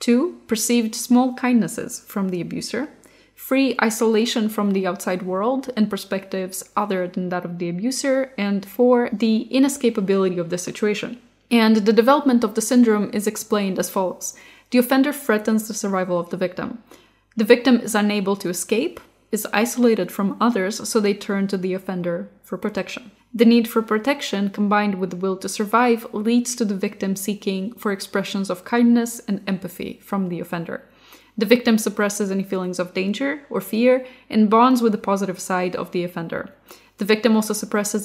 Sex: female